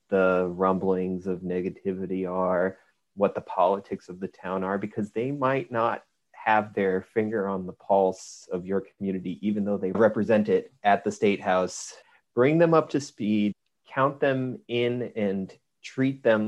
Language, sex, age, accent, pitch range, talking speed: English, male, 30-49, American, 100-120 Hz, 165 wpm